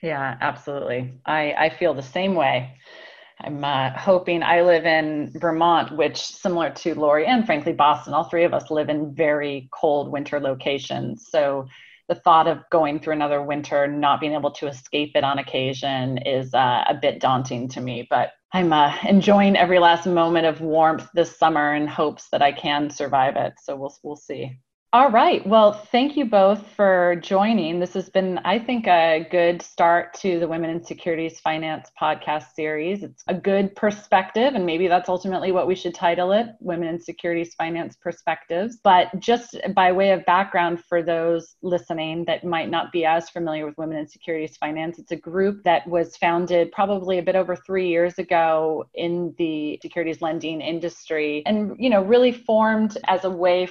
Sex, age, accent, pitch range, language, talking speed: female, 30-49, American, 155-185 Hz, English, 185 wpm